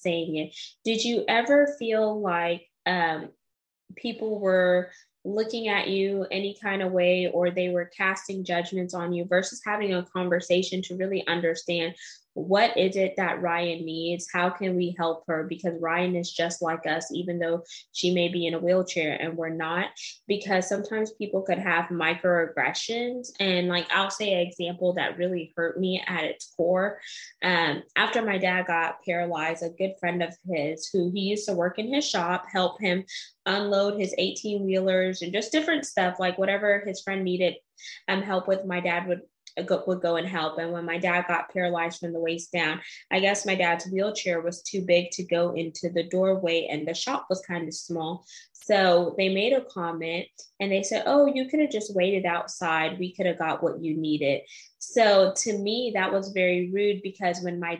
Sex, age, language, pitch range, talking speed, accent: female, 20-39, English, 170-195 Hz, 190 wpm, American